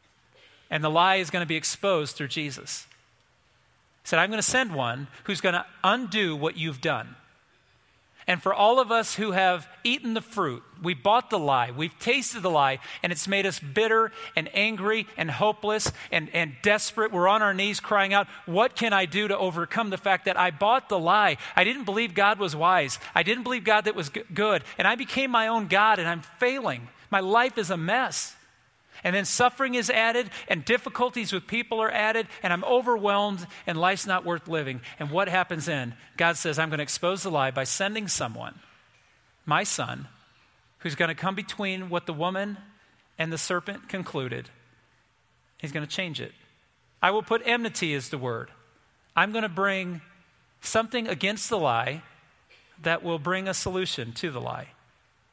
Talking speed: 190 wpm